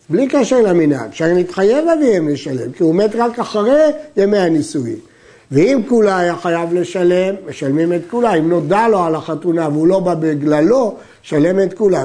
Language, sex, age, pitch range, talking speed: Hebrew, male, 60-79, 175-230 Hz, 170 wpm